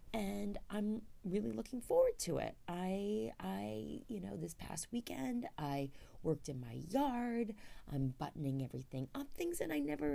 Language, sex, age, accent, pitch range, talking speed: English, female, 30-49, American, 135-205 Hz, 160 wpm